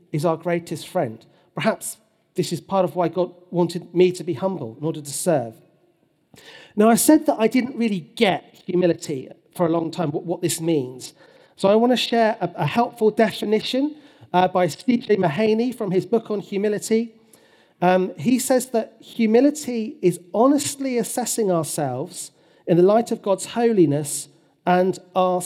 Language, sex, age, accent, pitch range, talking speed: English, male, 40-59, British, 175-225 Hz, 170 wpm